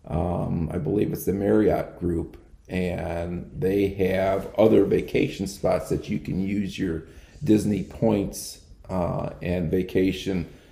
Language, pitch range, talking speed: English, 90-100 Hz, 130 wpm